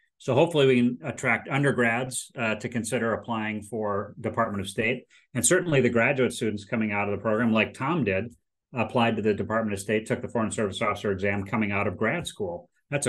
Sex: male